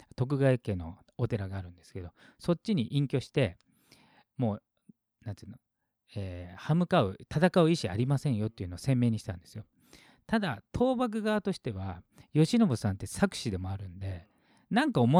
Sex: male